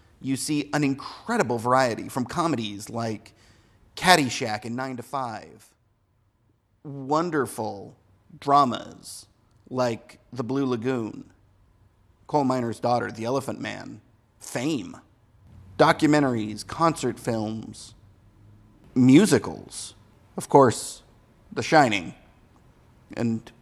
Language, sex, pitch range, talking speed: English, male, 110-145 Hz, 90 wpm